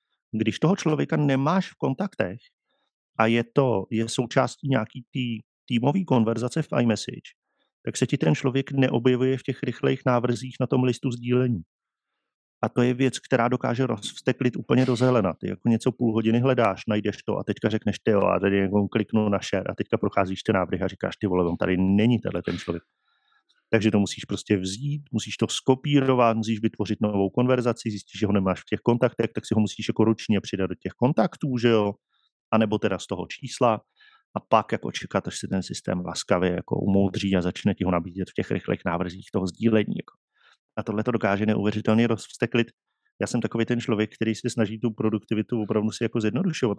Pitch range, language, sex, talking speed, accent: 100-125 Hz, Czech, male, 195 wpm, native